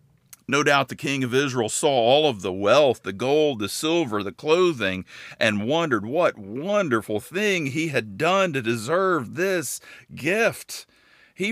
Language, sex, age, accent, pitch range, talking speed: English, male, 50-69, American, 115-160 Hz, 155 wpm